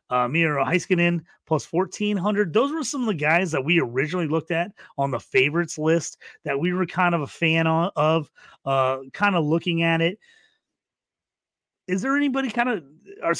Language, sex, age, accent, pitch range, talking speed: English, male, 30-49, American, 135-180 Hz, 180 wpm